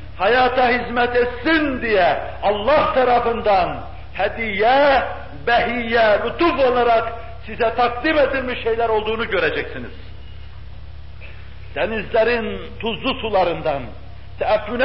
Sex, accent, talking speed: male, native, 80 wpm